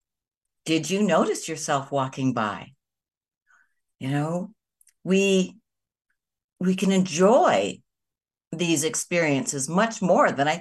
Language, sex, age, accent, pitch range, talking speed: English, female, 60-79, American, 140-200 Hz, 100 wpm